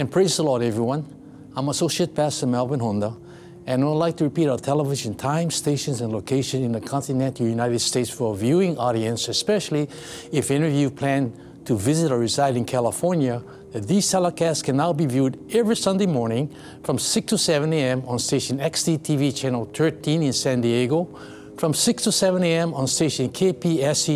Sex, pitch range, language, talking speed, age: male, 130-170 Hz, English, 180 wpm, 60-79